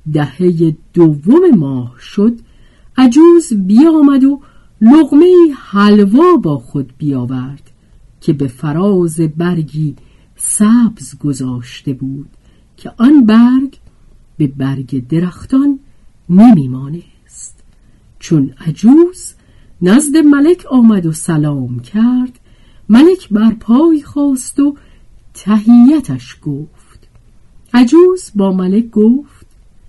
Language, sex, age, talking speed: Persian, female, 50-69, 90 wpm